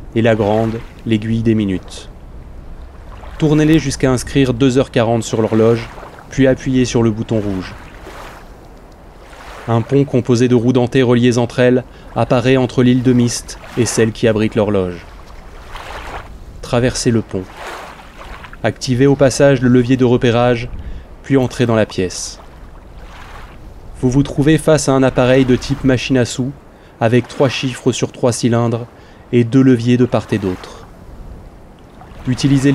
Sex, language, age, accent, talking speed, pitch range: male, French, 20-39, French, 145 wpm, 100-130 Hz